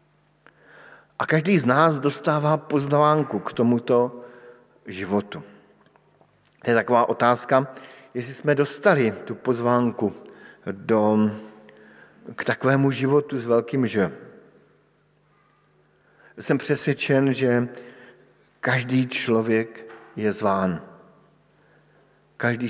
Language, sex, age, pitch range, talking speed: Slovak, male, 50-69, 115-135 Hz, 85 wpm